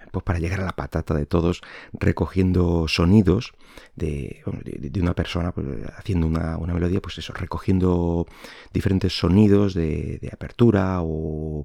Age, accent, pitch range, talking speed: 30-49, Spanish, 80-95 Hz, 140 wpm